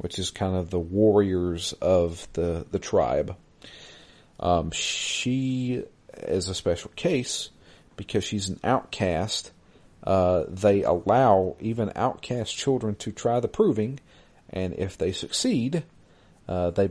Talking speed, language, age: 130 wpm, English, 40-59